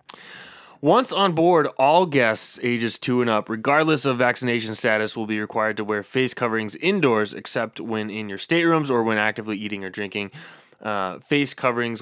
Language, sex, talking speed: English, male, 175 wpm